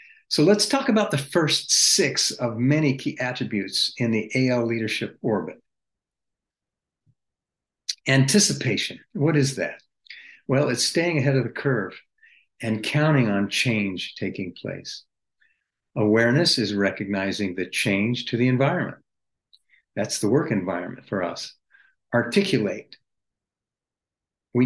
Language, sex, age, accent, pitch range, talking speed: English, male, 50-69, American, 115-150 Hz, 120 wpm